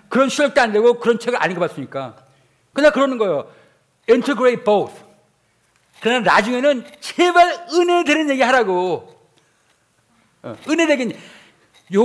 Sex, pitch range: male, 185-285 Hz